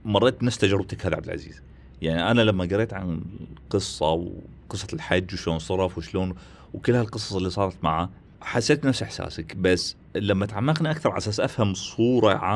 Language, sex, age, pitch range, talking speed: Arabic, male, 30-49, 95-120 Hz, 160 wpm